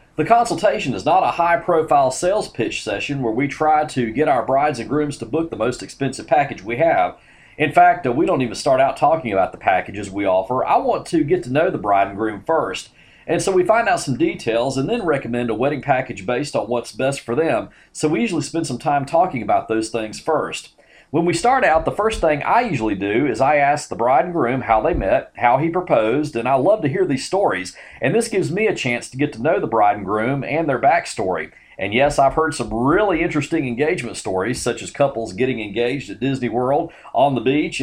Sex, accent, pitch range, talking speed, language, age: male, American, 120-160 Hz, 235 wpm, English, 40-59